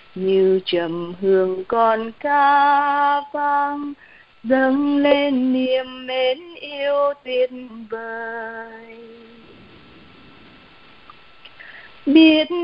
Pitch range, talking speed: 260-345 Hz, 65 wpm